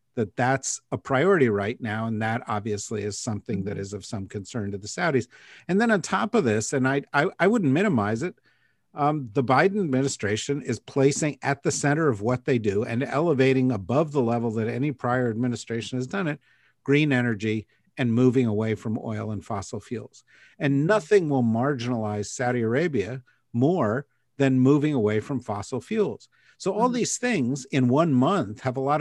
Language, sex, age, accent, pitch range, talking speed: English, male, 50-69, American, 115-145 Hz, 185 wpm